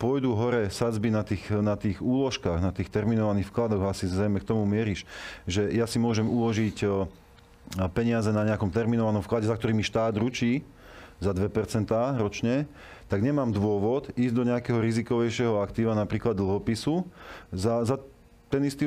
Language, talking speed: Slovak, 150 wpm